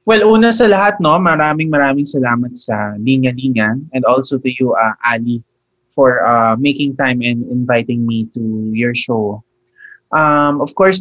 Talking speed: 165 wpm